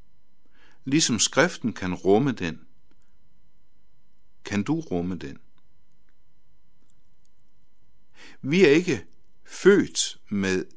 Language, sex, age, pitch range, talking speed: Danish, male, 60-79, 90-125 Hz, 80 wpm